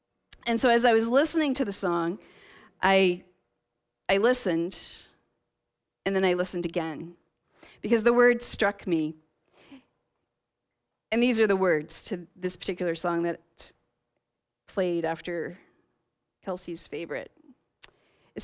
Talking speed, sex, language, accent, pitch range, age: 120 wpm, female, English, American, 175-225 Hz, 40-59